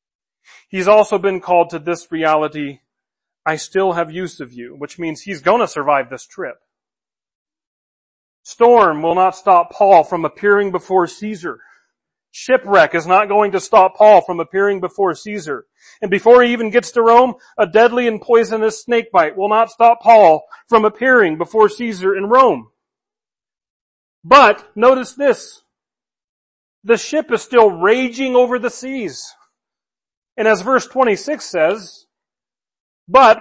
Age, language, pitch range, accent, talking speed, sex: 40-59, English, 175-240 Hz, American, 145 wpm, male